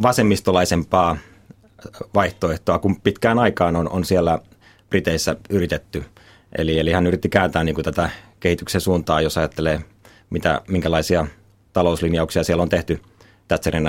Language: Finnish